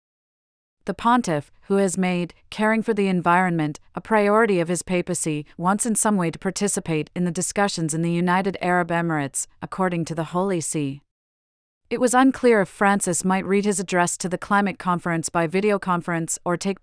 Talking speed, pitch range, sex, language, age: 180 wpm, 165-200 Hz, female, English, 40-59